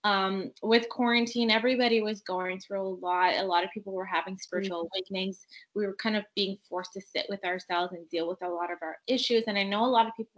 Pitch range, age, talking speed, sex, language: 185-230 Hz, 20-39, 245 wpm, female, English